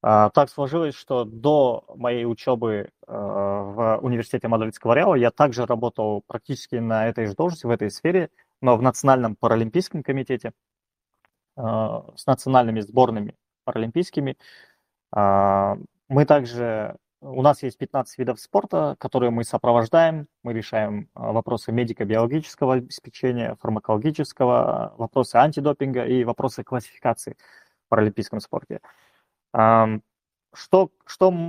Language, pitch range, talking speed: Russian, 115-140 Hz, 105 wpm